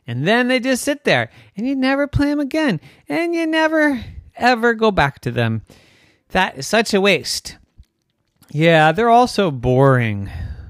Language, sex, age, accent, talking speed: English, male, 40-59, American, 170 wpm